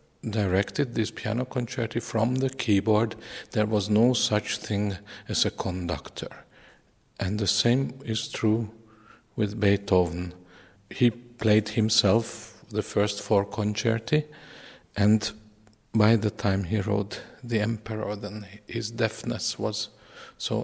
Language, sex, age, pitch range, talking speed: English, male, 50-69, 105-120 Hz, 120 wpm